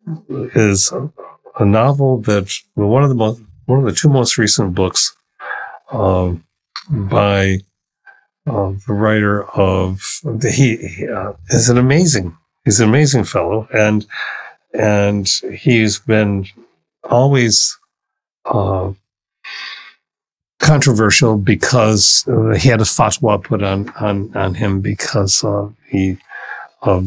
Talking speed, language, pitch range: 125 wpm, English, 95-130 Hz